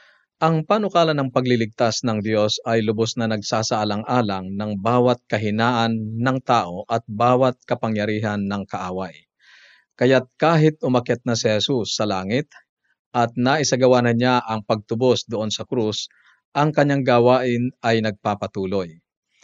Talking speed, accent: 130 wpm, native